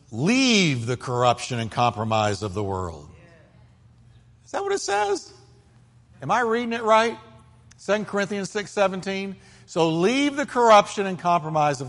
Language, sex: English, male